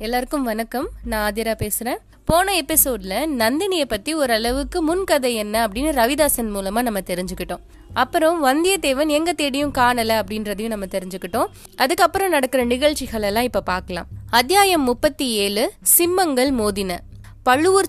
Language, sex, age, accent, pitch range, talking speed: Tamil, female, 20-39, native, 240-320 Hz, 125 wpm